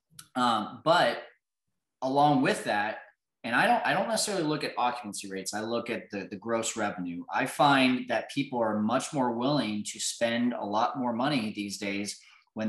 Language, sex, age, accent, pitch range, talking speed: English, male, 20-39, American, 110-130 Hz, 185 wpm